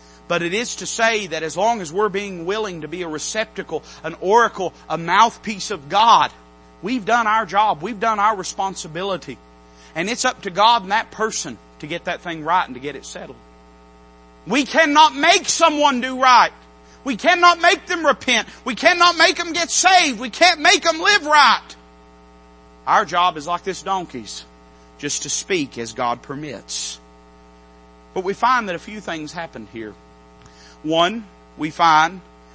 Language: English